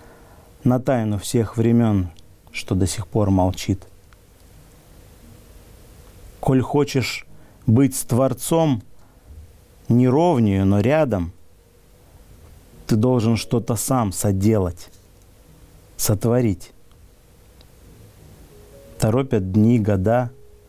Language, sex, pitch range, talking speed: Russian, male, 95-125 Hz, 80 wpm